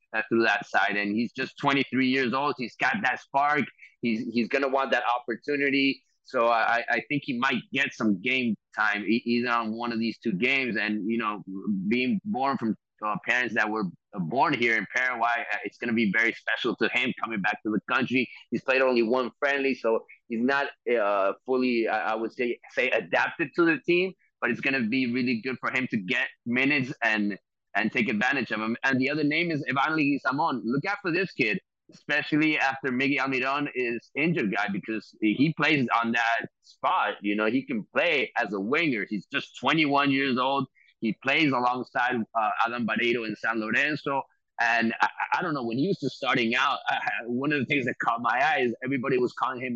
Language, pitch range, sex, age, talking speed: English, 115-140 Hz, male, 30-49, 205 wpm